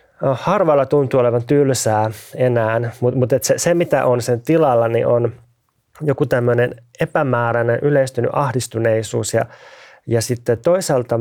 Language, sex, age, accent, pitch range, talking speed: Finnish, male, 20-39, native, 115-135 Hz, 120 wpm